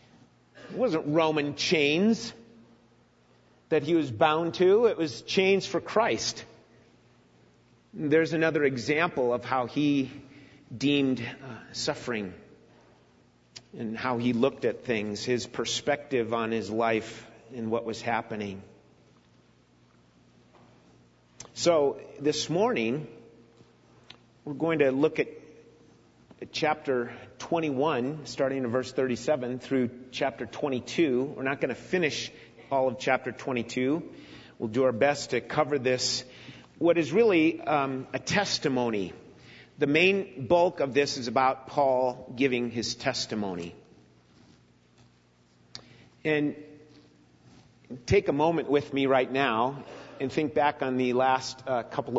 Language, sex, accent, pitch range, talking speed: English, male, American, 115-145 Hz, 120 wpm